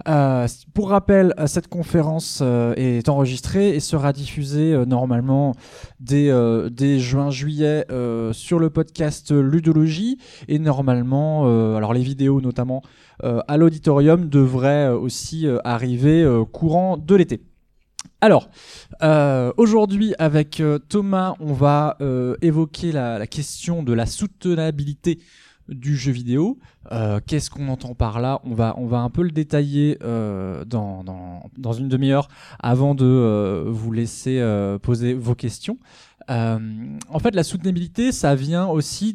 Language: French